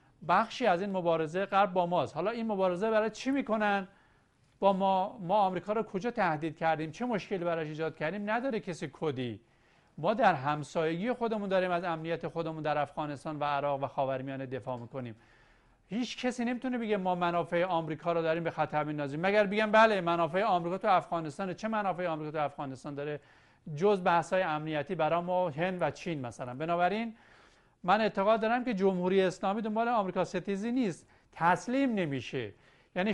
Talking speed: 170 wpm